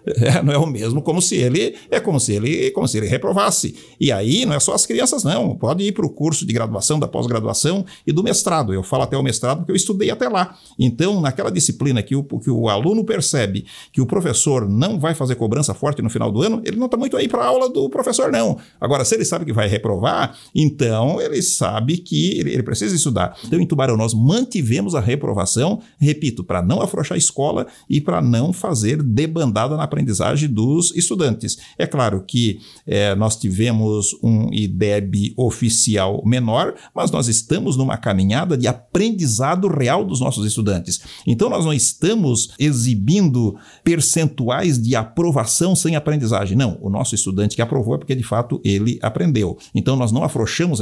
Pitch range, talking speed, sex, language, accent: 110-165 Hz, 190 wpm, male, Portuguese, Brazilian